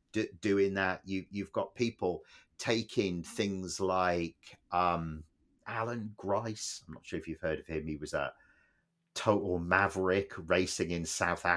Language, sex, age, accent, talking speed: English, male, 40-59, British, 130 wpm